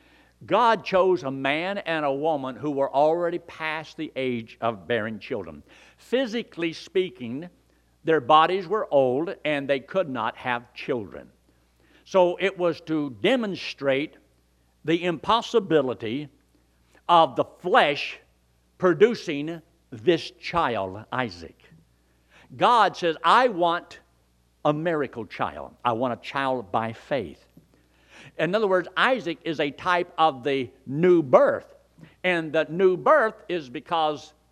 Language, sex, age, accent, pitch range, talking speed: English, male, 60-79, American, 125-180 Hz, 125 wpm